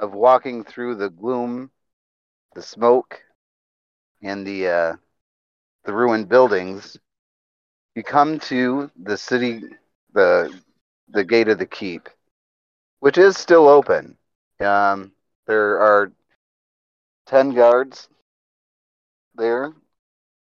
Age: 30-49